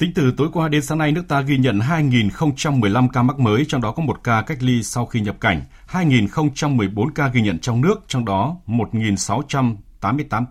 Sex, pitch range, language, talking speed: male, 105-140 Hz, Vietnamese, 200 wpm